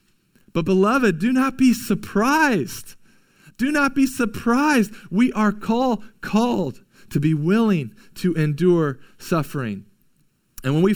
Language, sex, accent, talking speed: English, male, American, 120 wpm